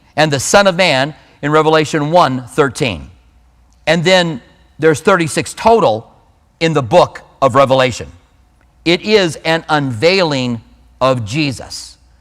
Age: 40-59